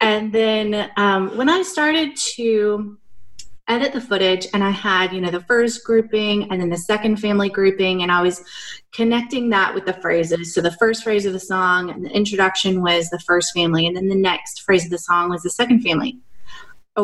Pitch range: 185-220 Hz